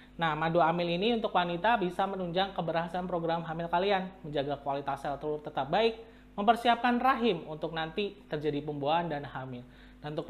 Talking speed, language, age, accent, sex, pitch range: 165 wpm, Indonesian, 20-39, native, male, 155-225 Hz